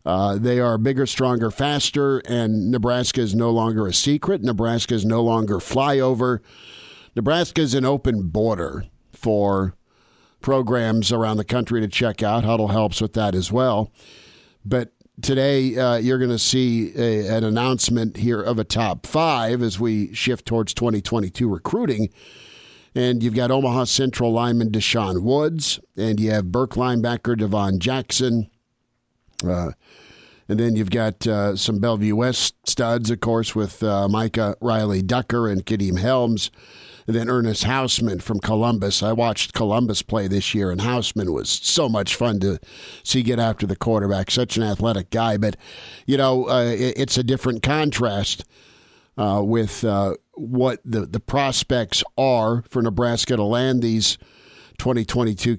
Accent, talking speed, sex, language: American, 155 wpm, male, English